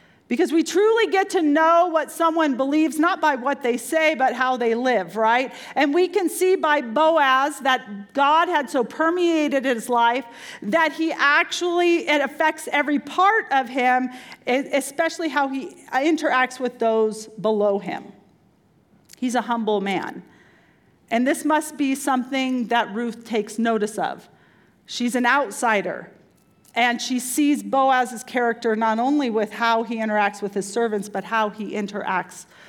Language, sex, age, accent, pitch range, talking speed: English, female, 40-59, American, 230-300 Hz, 155 wpm